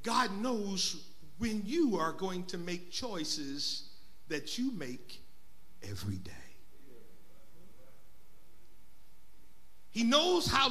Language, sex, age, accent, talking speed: English, male, 50-69, American, 95 wpm